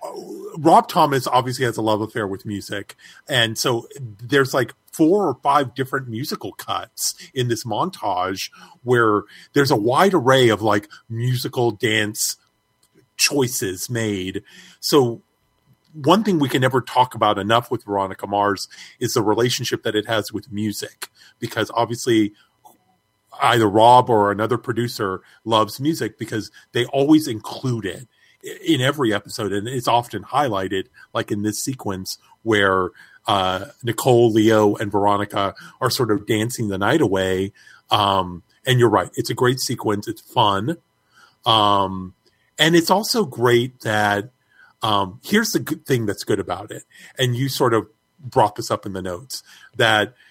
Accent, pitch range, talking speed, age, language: American, 105-130 Hz, 150 wpm, 40-59, English